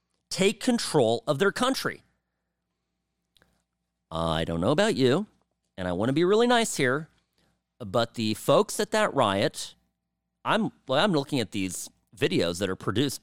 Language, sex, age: English, male, 40-59